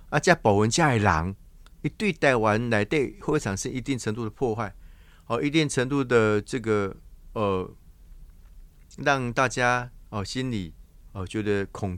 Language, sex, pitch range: Chinese, male, 90-125 Hz